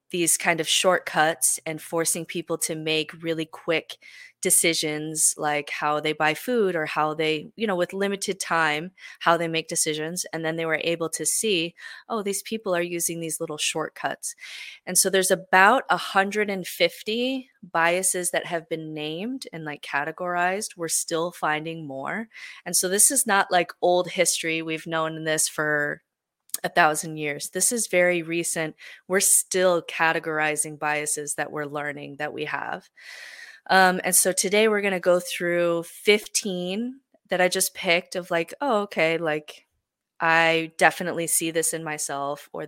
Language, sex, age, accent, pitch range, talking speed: English, female, 20-39, American, 160-195 Hz, 165 wpm